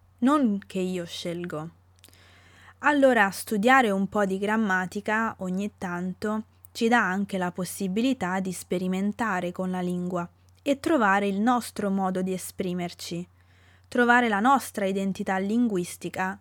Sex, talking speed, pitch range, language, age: female, 125 wpm, 180-215 Hz, Italian, 20-39